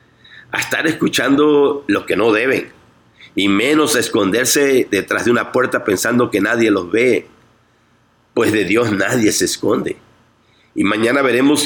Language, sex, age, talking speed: Spanish, male, 50-69, 150 wpm